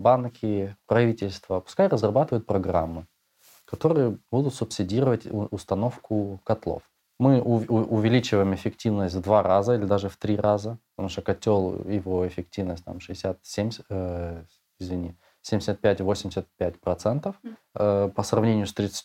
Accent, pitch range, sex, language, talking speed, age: native, 95-120 Hz, male, Russian, 105 wpm, 20-39